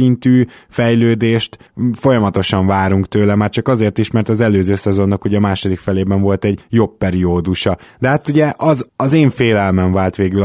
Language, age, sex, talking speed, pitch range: Hungarian, 20-39, male, 165 wpm, 100-125 Hz